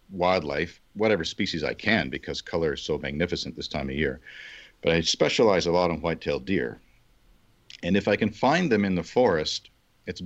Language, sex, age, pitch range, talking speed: English, male, 50-69, 80-95 Hz, 185 wpm